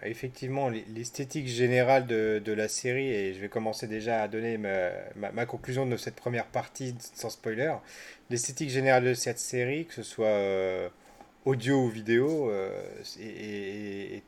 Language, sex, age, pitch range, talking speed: French, male, 30-49, 110-140 Hz, 155 wpm